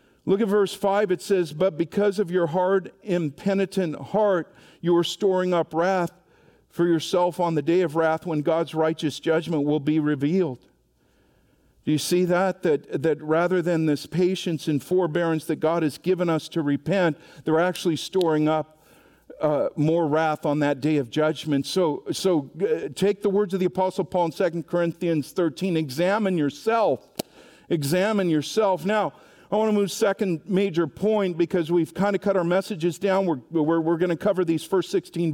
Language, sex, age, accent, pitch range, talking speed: English, male, 50-69, American, 160-195 Hz, 180 wpm